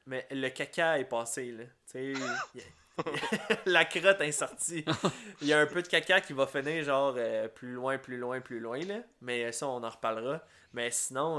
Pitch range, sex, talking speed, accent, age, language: 125-155 Hz, male, 200 wpm, Canadian, 20-39, French